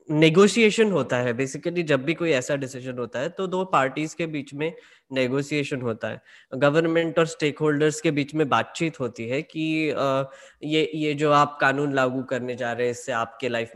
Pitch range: 130-170 Hz